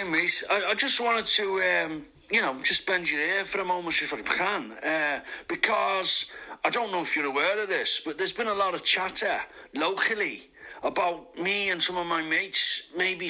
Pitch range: 175-240 Hz